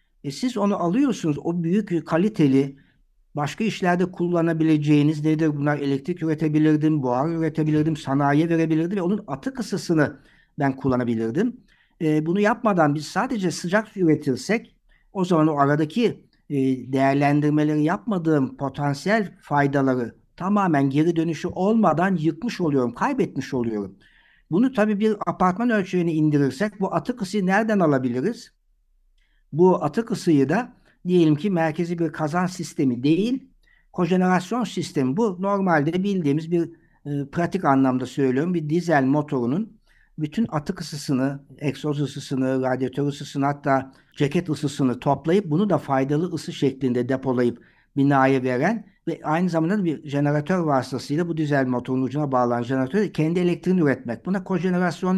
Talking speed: 130 wpm